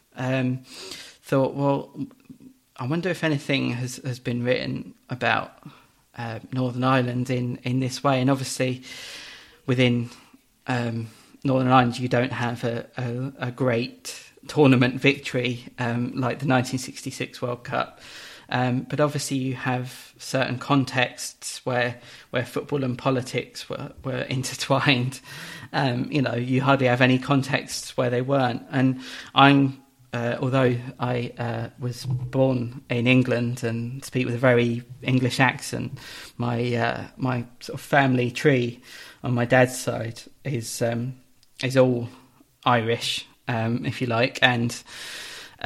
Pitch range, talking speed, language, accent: 120-135 Hz, 140 wpm, English, British